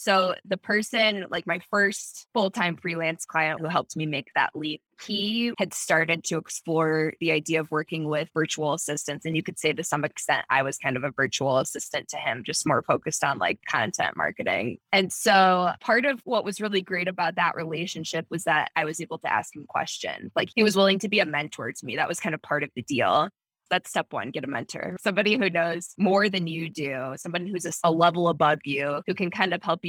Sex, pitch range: female, 160-200 Hz